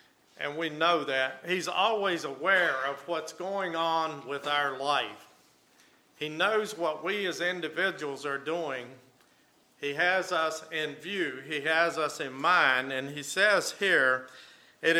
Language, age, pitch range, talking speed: English, 50-69, 140-165 Hz, 150 wpm